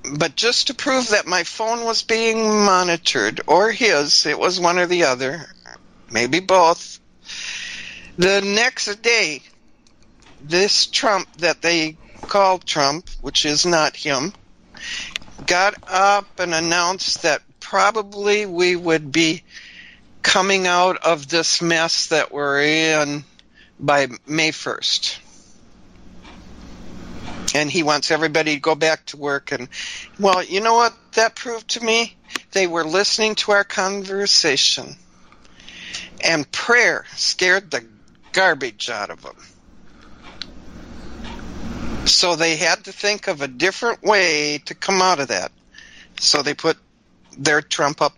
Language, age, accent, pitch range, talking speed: English, 60-79, American, 145-195 Hz, 130 wpm